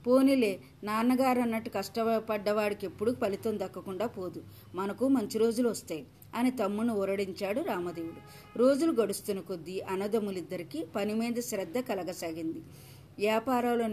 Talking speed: 105 wpm